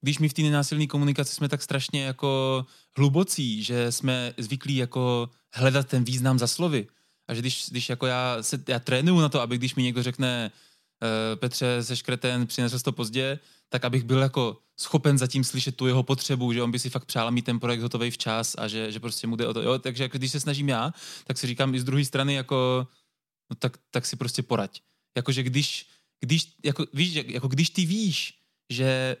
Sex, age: male, 20-39